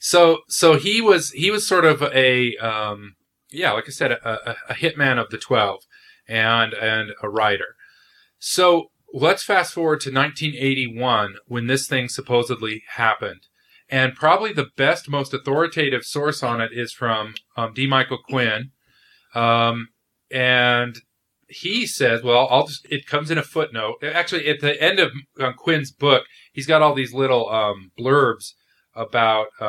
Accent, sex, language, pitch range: American, male, English, 120-150 Hz